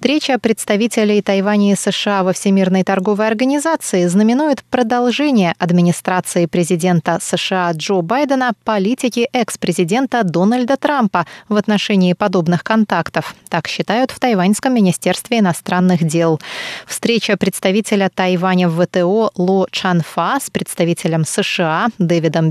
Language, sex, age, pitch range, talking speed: Russian, female, 20-39, 185-235 Hz, 110 wpm